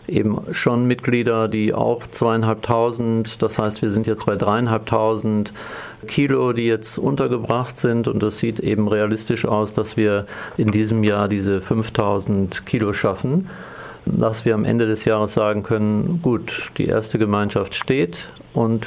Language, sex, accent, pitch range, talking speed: German, male, German, 110-120 Hz, 150 wpm